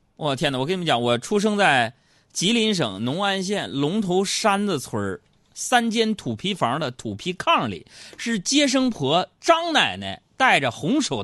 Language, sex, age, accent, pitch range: Chinese, male, 30-49, native, 115-185 Hz